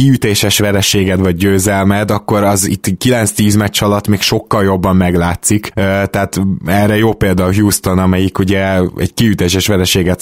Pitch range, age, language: 95-115 Hz, 20-39, Hungarian